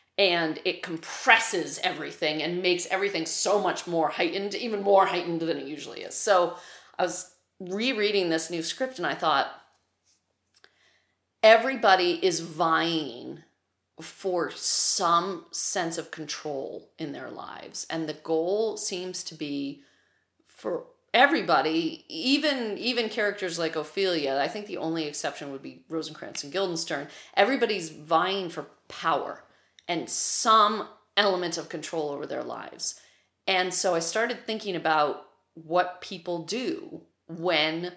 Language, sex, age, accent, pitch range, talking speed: English, female, 30-49, American, 160-195 Hz, 135 wpm